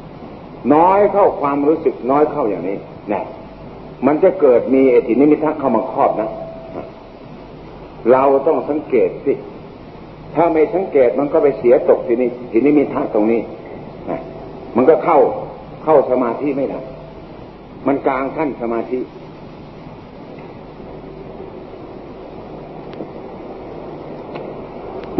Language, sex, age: Thai, male, 60-79